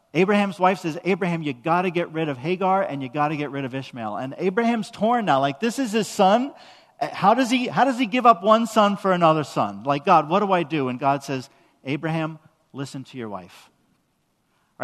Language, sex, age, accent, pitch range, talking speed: English, male, 40-59, American, 150-205 Hz, 225 wpm